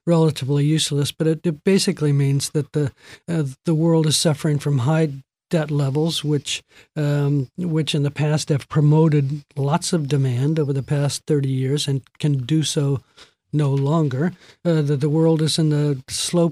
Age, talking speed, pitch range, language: 50-69, 175 wpm, 145-160 Hz, English